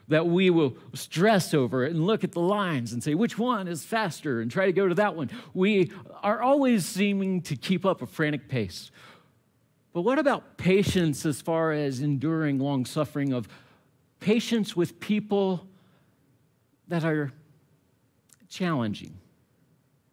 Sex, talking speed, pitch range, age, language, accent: male, 150 wpm, 140-200 Hz, 50-69, English, American